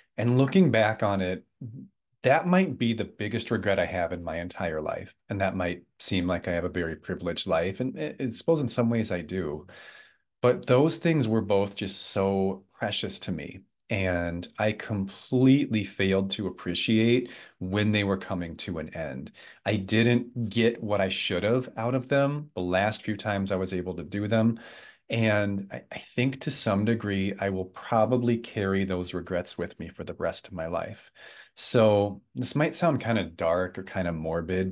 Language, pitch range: English, 95-120 Hz